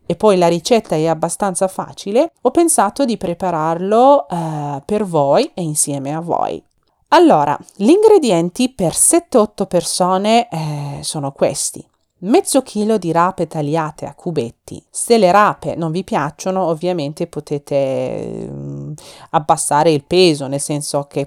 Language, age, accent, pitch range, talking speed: Italian, 30-49, native, 155-210 Hz, 140 wpm